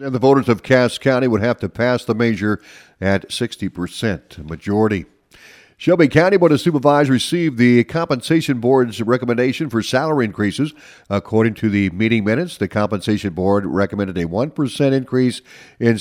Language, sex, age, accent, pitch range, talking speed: English, male, 50-69, American, 95-130 Hz, 155 wpm